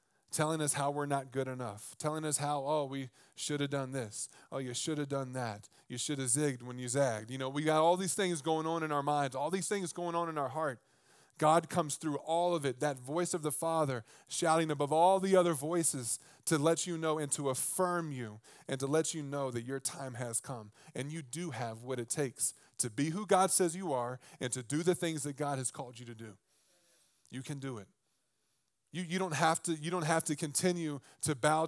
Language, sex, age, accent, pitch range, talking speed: English, male, 20-39, American, 140-175 Hz, 240 wpm